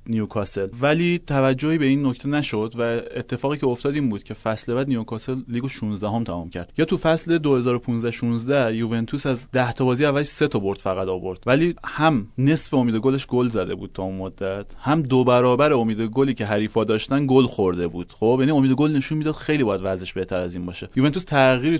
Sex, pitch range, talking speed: male, 110-135 Hz, 200 wpm